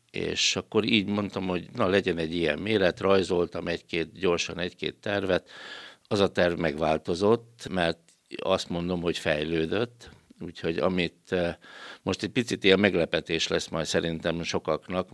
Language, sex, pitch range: Hungarian, male, 80-95 Hz